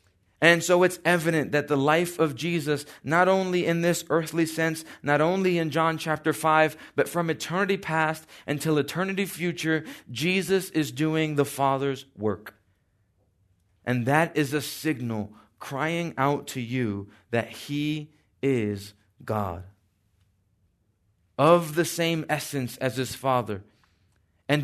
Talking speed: 135 wpm